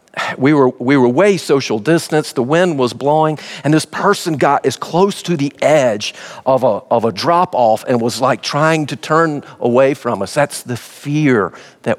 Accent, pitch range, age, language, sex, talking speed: American, 115-150 Hz, 50-69, English, male, 190 wpm